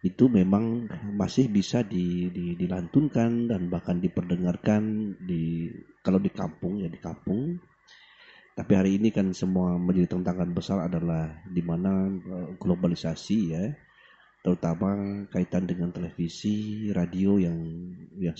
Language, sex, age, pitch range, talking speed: Indonesian, male, 30-49, 90-130 Hz, 115 wpm